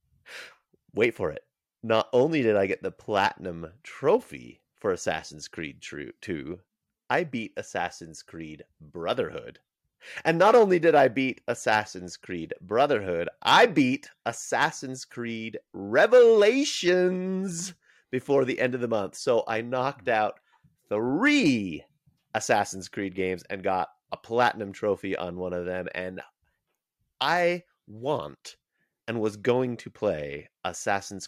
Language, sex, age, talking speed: English, male, 30-49, 125 wpm